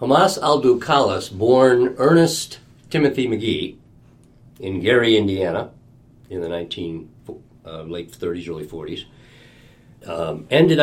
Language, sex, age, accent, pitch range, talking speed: English, male, 50-69, American, 90-130 Hz, 110 wpm